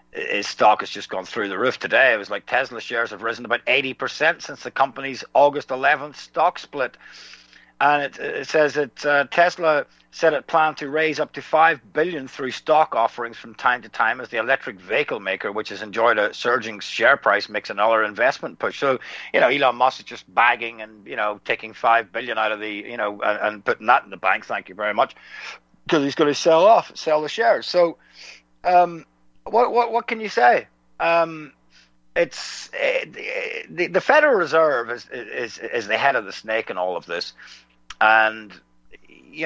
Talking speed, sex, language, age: 200 wpm, male, English, 50-69